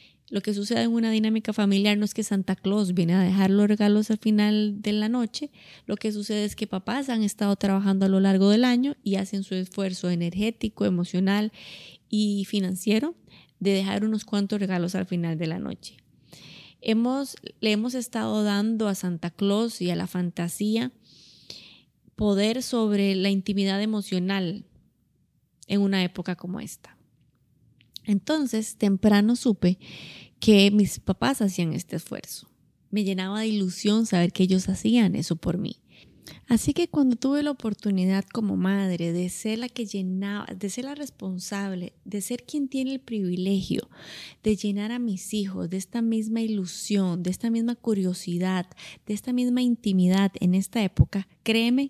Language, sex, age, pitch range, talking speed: Spanish, female, 20-39, 185-220 Hz, 160 wpm